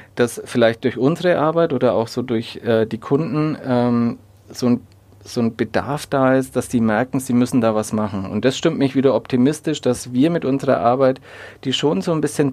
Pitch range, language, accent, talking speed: 120-140 Hz, German, German, 210 wpm